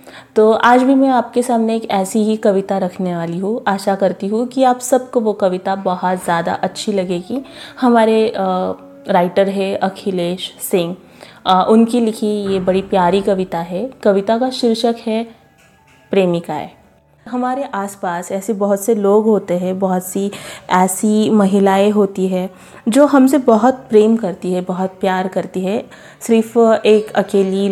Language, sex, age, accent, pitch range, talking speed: Marathi, female, 30-49, native, 185-225 Hz, 150 wpm